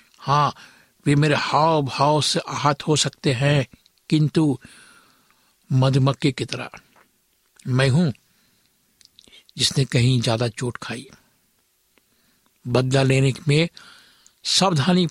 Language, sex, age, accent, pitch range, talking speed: Hindi, male, 60-79, native, 130-150 Hz, 100 wpm